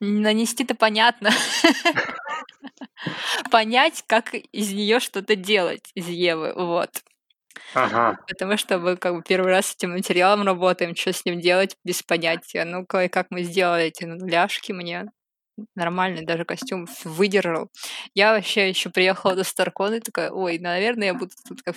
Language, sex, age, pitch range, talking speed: Russian, female, 20-39, 175-215 Hz, 145 wpm